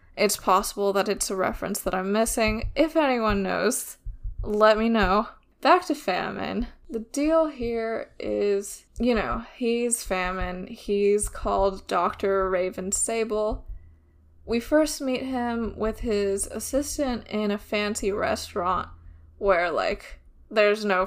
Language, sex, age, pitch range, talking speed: English, female, 10-29, 195-235 Hz, 130 wpm